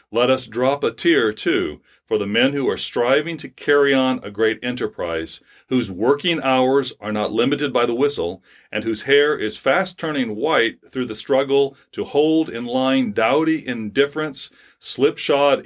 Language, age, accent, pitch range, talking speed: English, 40-59, American, 115-145 Hz, 170 wpm